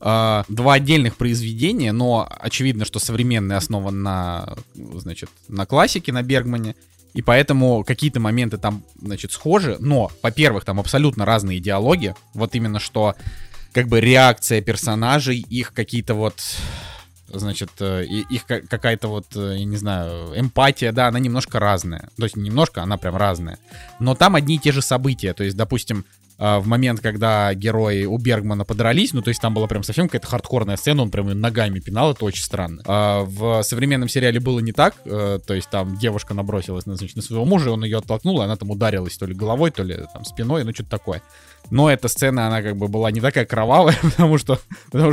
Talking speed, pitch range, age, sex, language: 180 wpm, 100-130 Hz, 20-39, male, Russian